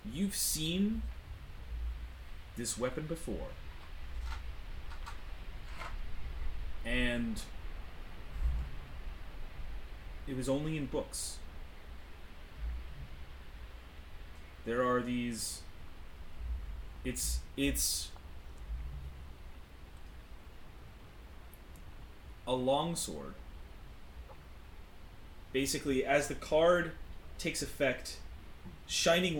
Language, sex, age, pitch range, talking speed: English, male, 30-49, 75-110 Hz, 50 wpm